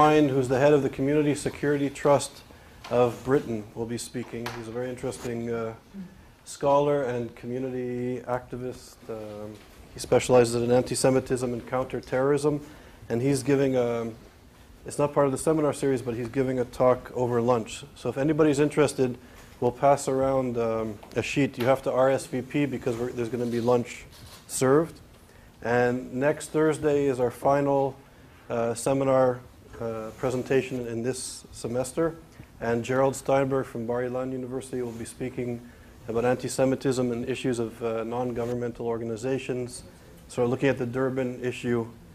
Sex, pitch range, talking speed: male, 120-140 Hz, 150 wpm